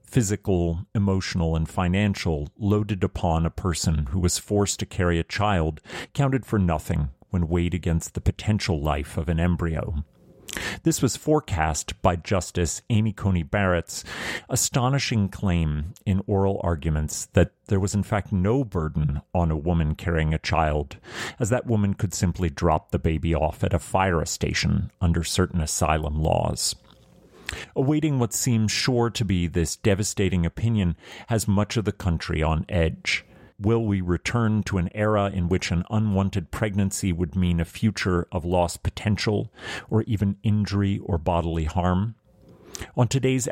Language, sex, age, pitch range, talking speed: English, male, 40-59, 85-105 Hz, 155 wpm